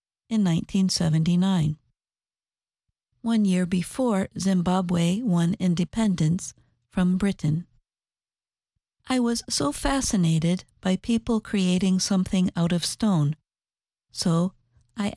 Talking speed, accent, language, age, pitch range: 90 wpm, American, English, 50-69, 165-220 Hz